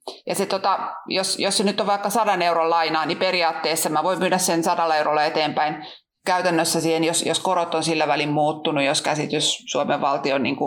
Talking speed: 190 wpm